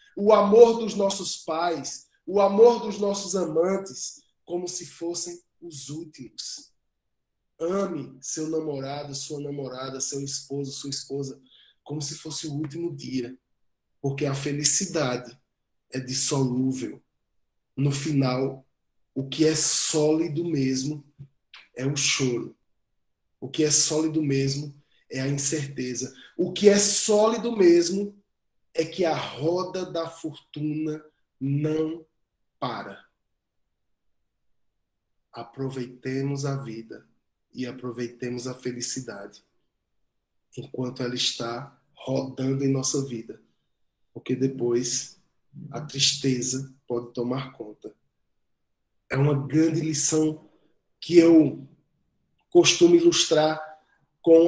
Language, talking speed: Portuguese, 105 wpm